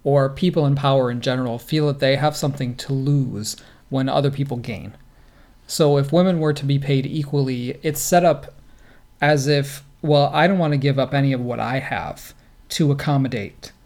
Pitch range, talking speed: 130-155 Hz, 190 wpm